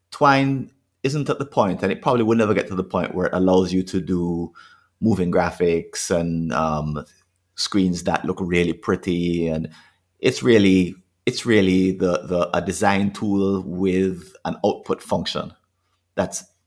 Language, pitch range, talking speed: English, 90-105 Hz, 160 wpm